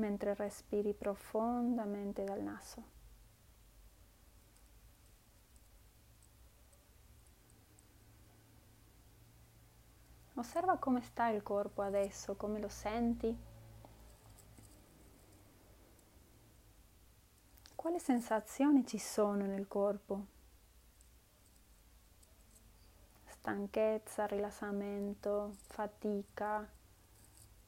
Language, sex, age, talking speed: Italian, female, 30-49, 50 wpm